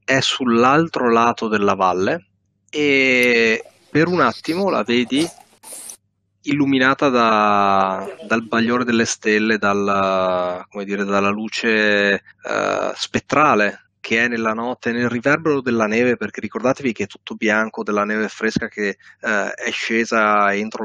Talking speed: 120 wpm